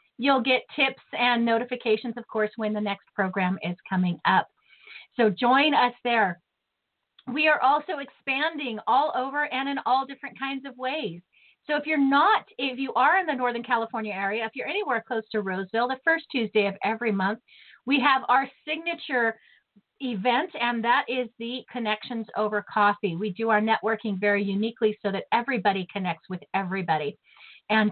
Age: 40-59